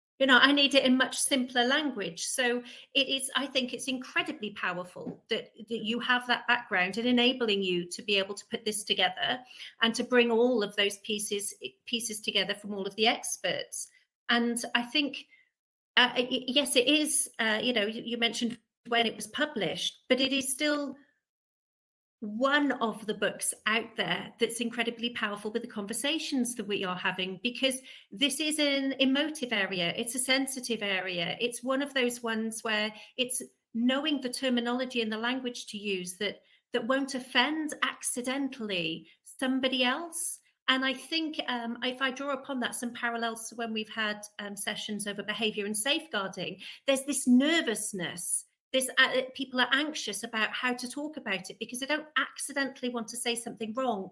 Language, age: English, 40-59